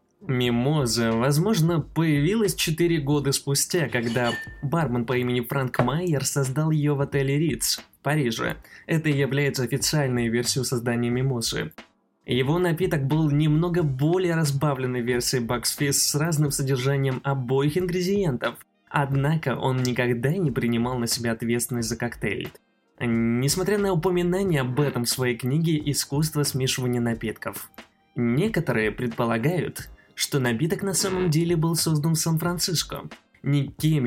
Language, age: Russian, 20-39